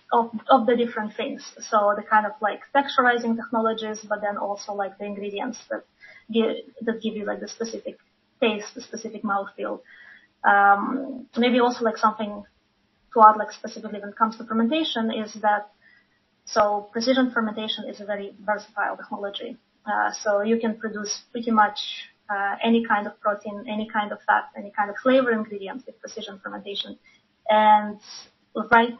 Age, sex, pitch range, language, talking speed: 20-39, female, 205-230 Hz, English, 165 wpm